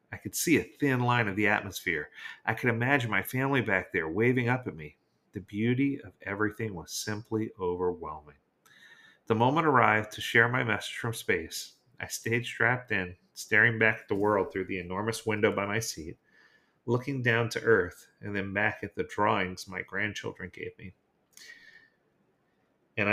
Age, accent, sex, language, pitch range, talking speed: 40-59, American, male, English, 95-115 Hz, 175 wpm